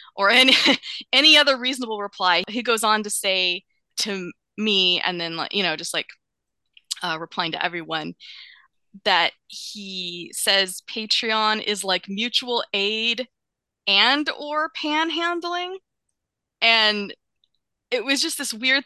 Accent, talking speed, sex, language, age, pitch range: American, 125 wpm, female, English, 20-39, 185-260 Hz